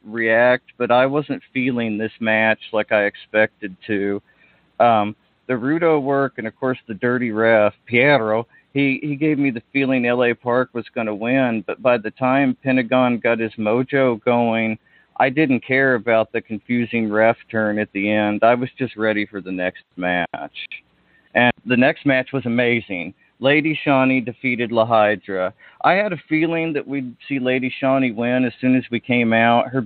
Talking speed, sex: 180 wpm, male